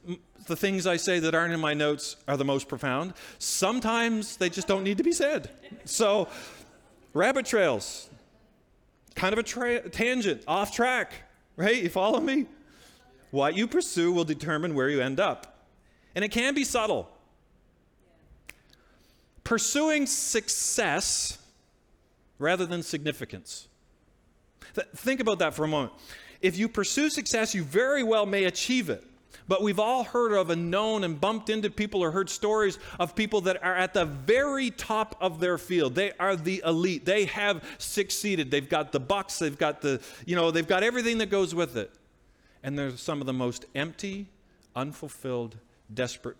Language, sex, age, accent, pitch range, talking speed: English, male, 40-59, American, 140-215 Hz, 165 wpm